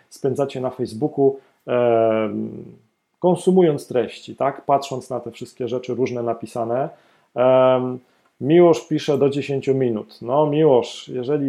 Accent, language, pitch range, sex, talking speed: native, Polish, 125-150 Hz, male, 110 wpm